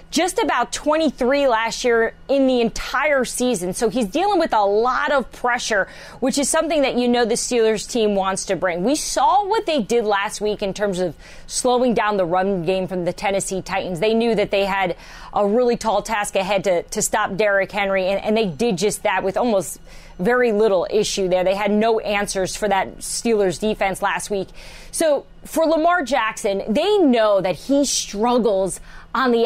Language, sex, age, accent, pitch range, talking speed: English, female, 30-49, American, 205-280 Hz, 200 wpm